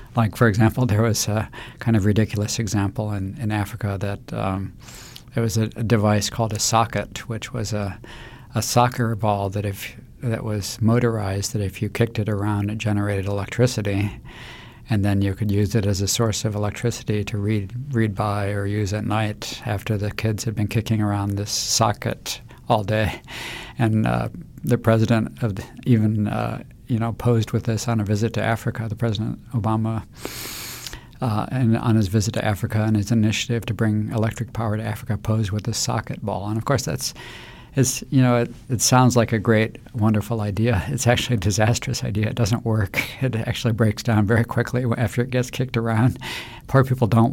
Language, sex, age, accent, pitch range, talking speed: English, male, 60-79, American, 105-120 Hz, 195 wpm